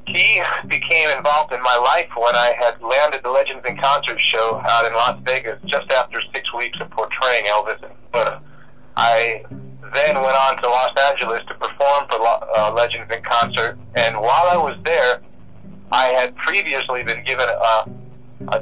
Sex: male